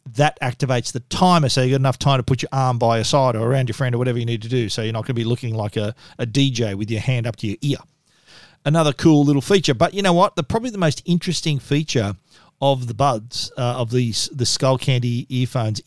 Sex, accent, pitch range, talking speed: male, Australian, 125-155 Hz, 255 wpm